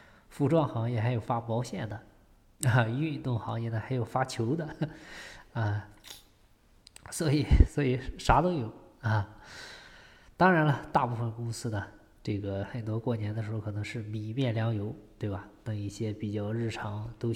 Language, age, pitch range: Chinese, 20-39, 110-135 Hz